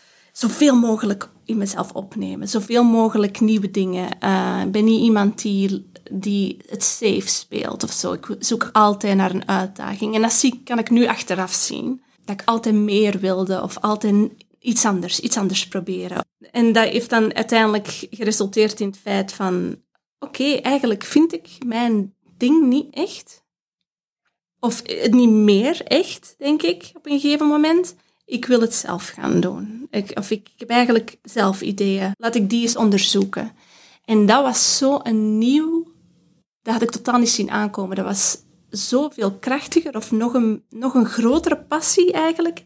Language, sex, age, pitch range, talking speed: English, female, 20-39, 200-250 Hz, 165 wpm